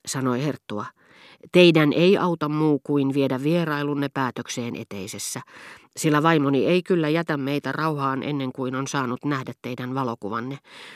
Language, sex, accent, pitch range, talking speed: Finnish, female, native, 125-165 Hz, 135 wpm